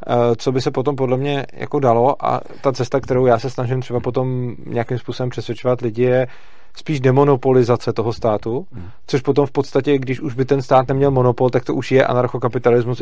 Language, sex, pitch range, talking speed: Czech, male, 120-130 Hz, 195 wpm